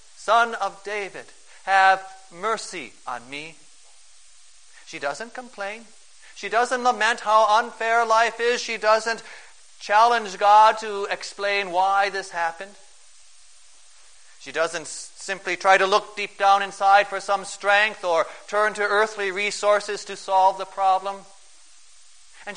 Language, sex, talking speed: English, male, 130 wpm